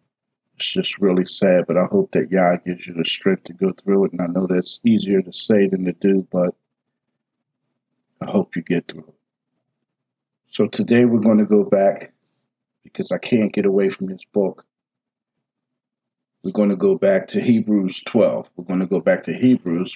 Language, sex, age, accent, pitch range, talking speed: English, male, 50-69, American, 95-115 Hz, 190 wpm